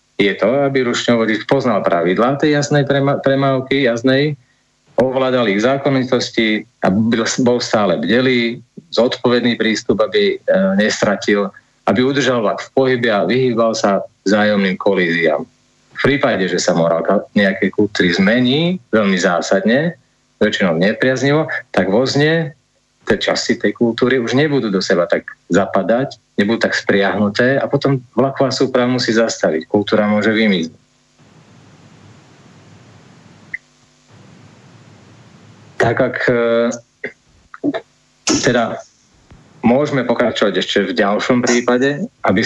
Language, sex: Slovak, male